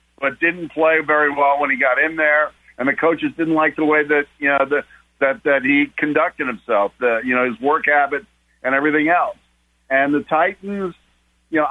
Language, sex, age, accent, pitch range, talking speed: English, male, 50-69, American, 125-150 Hz, 205 wpm